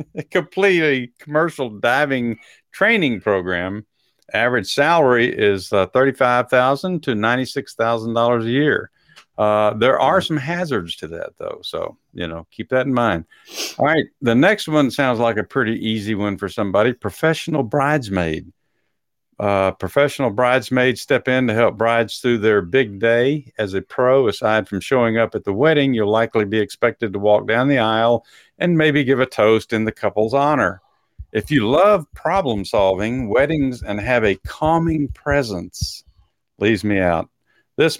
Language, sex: English, male